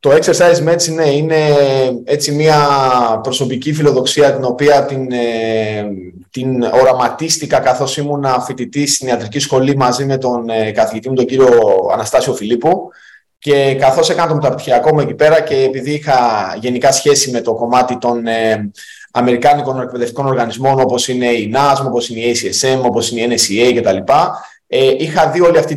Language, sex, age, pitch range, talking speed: Greek, male, 20-39, 125-155 Hz, 160 wpm